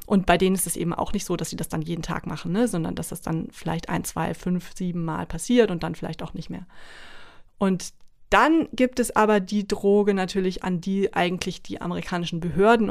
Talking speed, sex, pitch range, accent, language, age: 220 wpm, female, 180-210 Hz, German, German, 30-49